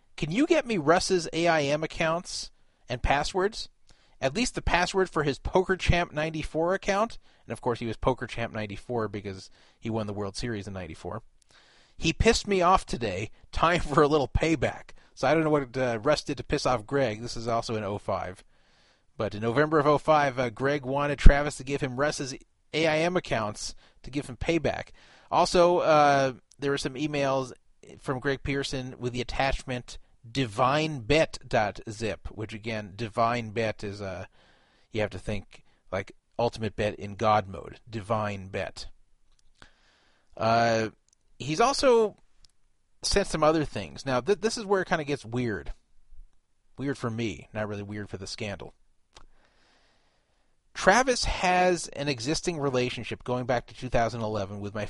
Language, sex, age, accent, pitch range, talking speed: English, male, 30-49, American, 110-155 Hz, 160 wpm